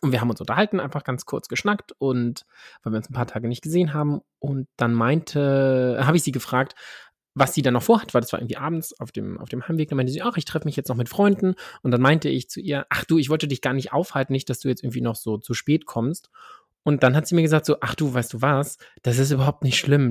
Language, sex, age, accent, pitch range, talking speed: German, male, 20-39, German, 115-145 Hz, 275 wpm